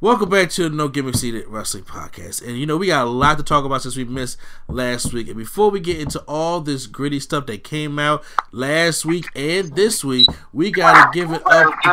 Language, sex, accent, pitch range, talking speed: English, male, American, 130-160 Hz, 240 wpm